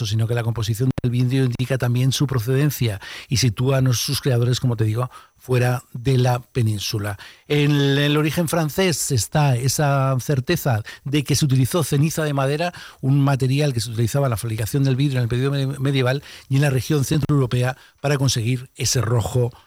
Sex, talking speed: male, 180 wpm